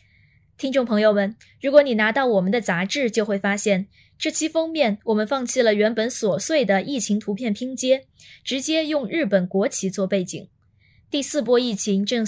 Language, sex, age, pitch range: Chinese, female, 20-39, 195-265 Hz